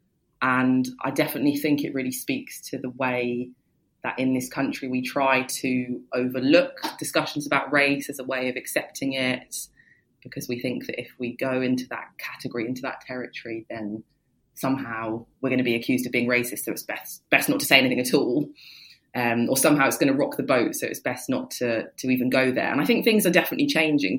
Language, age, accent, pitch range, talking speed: English, 20-39, British, 125-145 Hz, 210 wpm